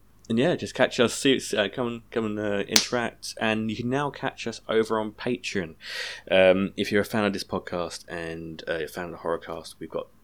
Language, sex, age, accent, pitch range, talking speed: English, male, 20-39, British, 90-105 Hz, 230 wpm